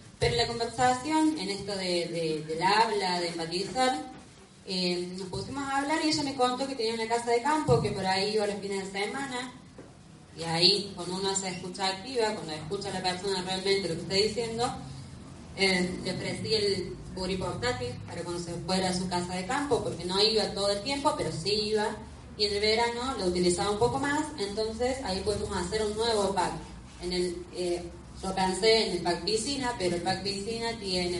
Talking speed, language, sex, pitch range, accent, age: 205 wpm, Spanish, female, 180-230 Hz, Argentinian, 20-39